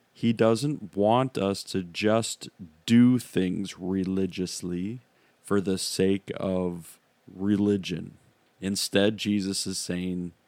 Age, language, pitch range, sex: 40-59, English, 95-120 Hz, male